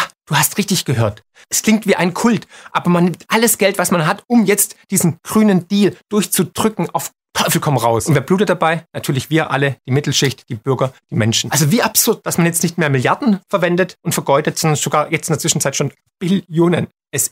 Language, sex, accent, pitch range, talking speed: German, male, German, 140-185 Hz, 210 wpm